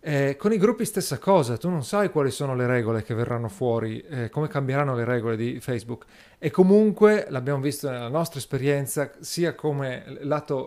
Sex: male